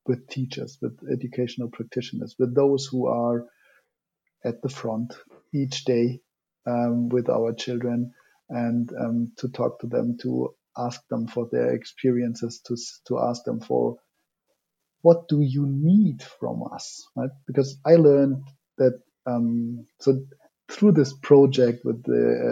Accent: German